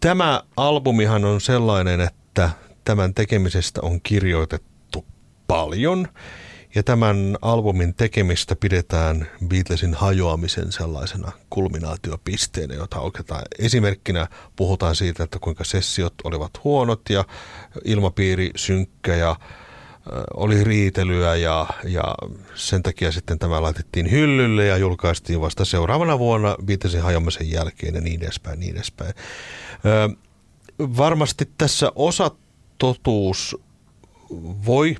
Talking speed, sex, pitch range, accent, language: 105 wpm, male, 85-115 Hz, native, Finnish